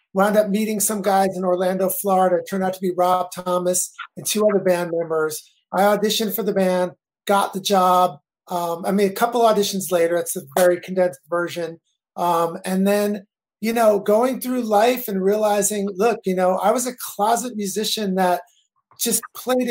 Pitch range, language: 180-220 Hz, English